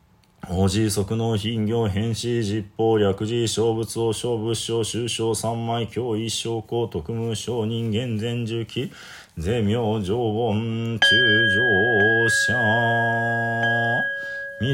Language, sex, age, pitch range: Japanese, male, 40-59, 110-115 Hz